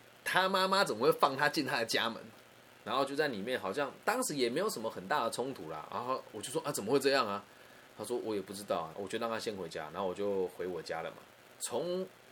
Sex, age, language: male, 20-39, Chinese